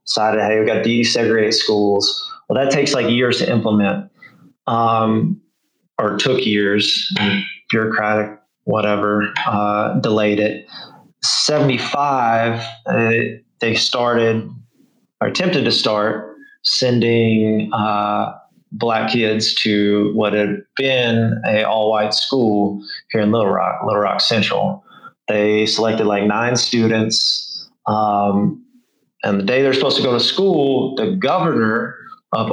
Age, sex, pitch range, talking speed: 30-49, male, 105-125 Hz, 125 wpm